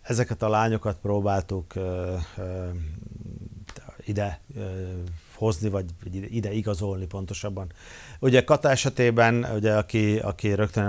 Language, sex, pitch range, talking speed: Hungarian, male, 95-110 Hz, 110 wpm